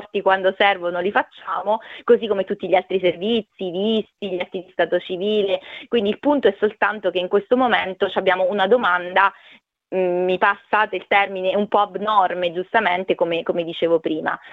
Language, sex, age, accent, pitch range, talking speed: Italian, female, 20-39, native, 185-210 Hz, 170 wpm